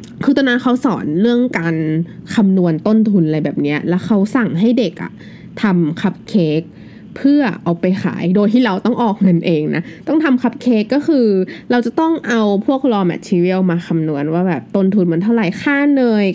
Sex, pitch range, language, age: female, 170-225 Hz, Thai, 20-39